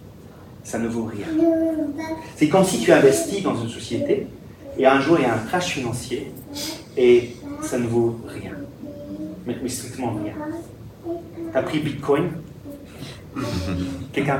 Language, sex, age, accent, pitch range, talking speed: French, male, 30-49, French, 115-160 Hz, 150 wpm